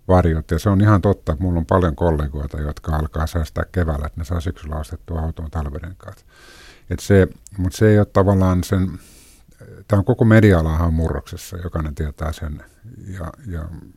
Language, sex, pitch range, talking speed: Finnish, male, 80-95 Hz, 170 wpm